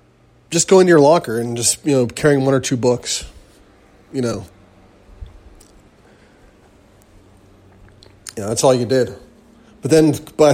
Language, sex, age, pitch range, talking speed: English, male, 30-49, 110-145 Hz, 135 wpm